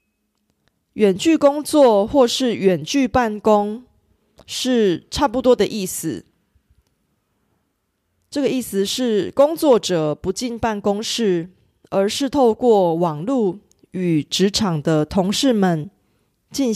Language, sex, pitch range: Korean, female, 180-250 Hz